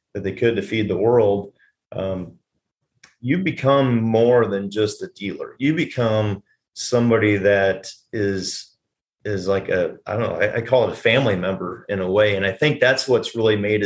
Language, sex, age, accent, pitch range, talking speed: English, male, 30-49, American, 100-125 Hz, 185 wpm